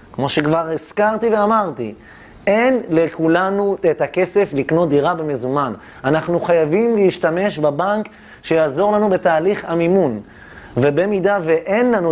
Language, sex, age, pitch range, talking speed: Hebrew, male, 30-49, 135-195 Hz, 110 wpm